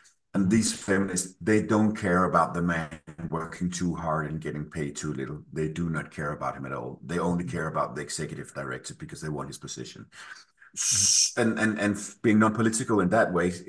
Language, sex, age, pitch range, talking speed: English, male, 50-69, 85-105 Hz, 195 wpm